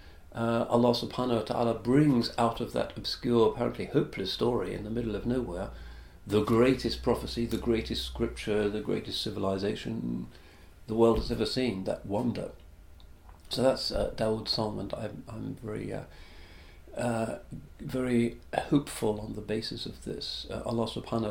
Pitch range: 80-120 Hz